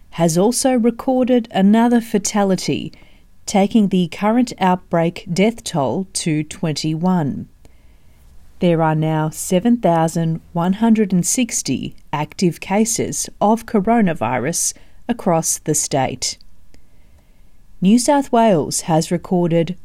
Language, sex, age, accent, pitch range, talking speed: English, female, 40-59, Australian, 155-220 Hz, 90 wpm